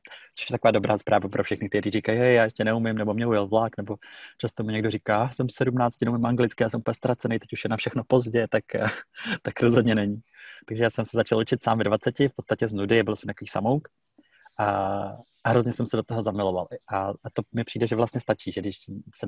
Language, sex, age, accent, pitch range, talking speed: Czech, male, 30-49, native, 100-115 Hz, 235 wpm